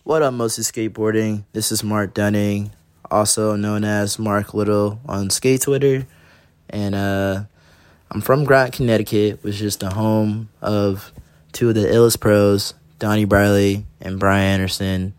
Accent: American